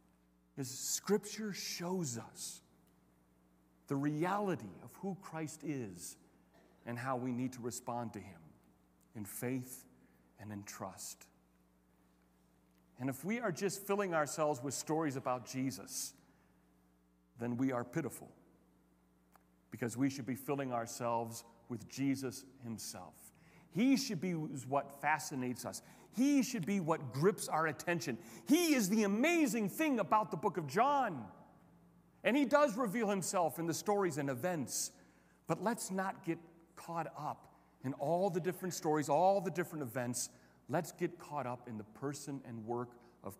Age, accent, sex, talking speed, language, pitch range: 40-59, American, male, 145 wpm, English, 105-180 Hz